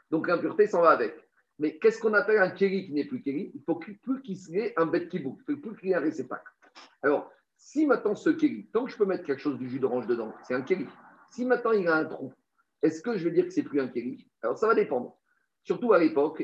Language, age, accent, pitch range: French, 50-69, French, 170-250 Hz